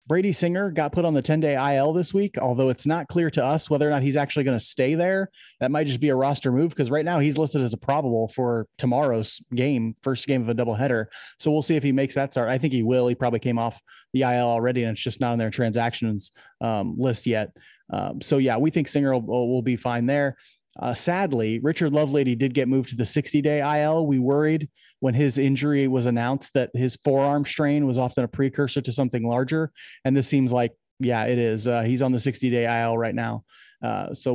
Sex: male